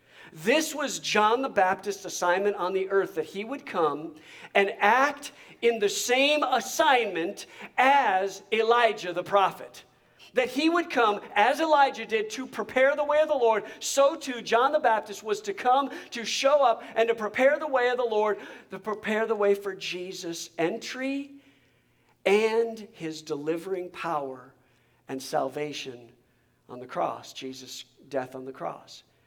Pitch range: 185-280 Hz